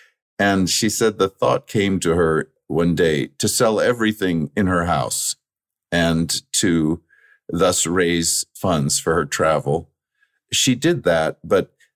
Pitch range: 85-110 Hz